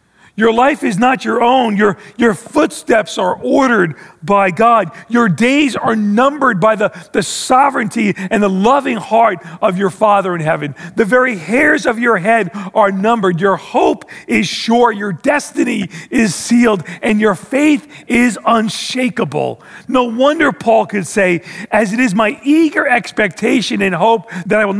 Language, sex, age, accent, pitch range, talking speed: English, male, 40-59, American, 180-235 Hz, 160 wpm